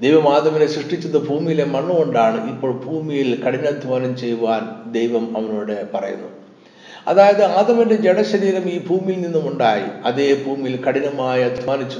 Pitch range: 120-170 Hz